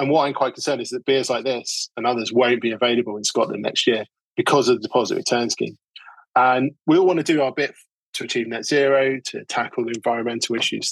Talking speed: 230 wpm